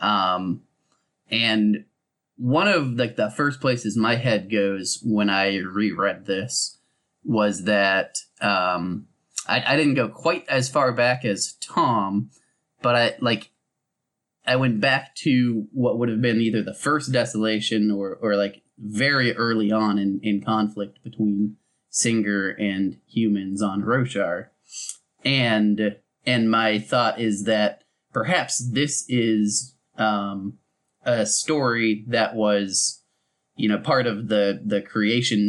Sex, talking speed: male, 135 wpm